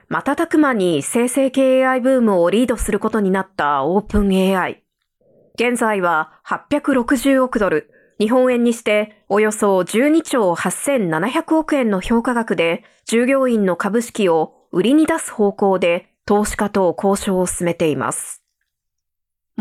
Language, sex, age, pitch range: Japanese, female, 20-39, 190-270 Hz